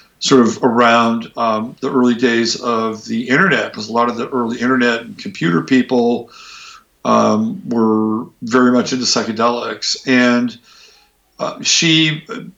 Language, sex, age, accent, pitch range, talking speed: English, male, 50-69, American, 115-140 Hz, 140 wpm